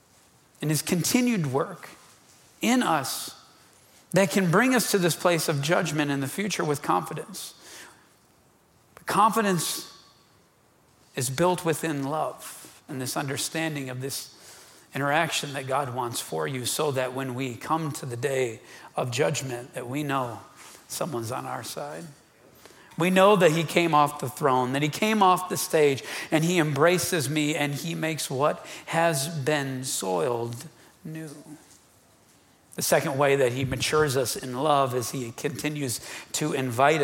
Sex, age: male, 40-59